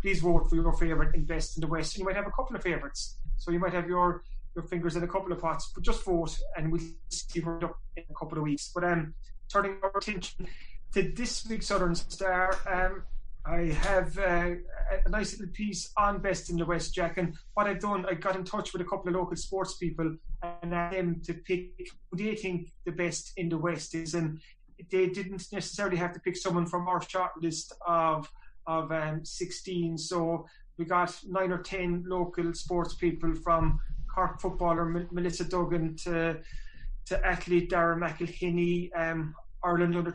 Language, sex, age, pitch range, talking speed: English, male, 30-49, 165-180 Hz, 200 wpm